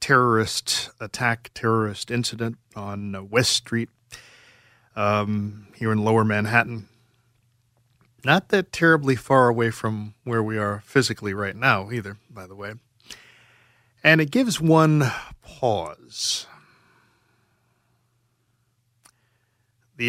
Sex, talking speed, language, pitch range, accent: male, 100 wpm, English, 115-125 Hz, American